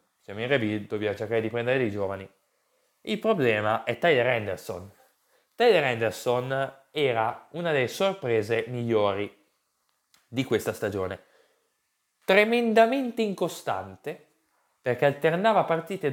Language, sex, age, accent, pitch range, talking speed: Italian, male, 20-39, native, 130-190 Hz, 105 wpm